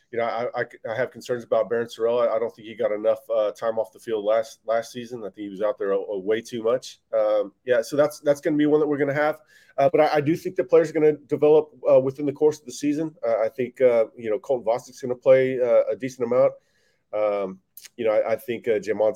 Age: 30-49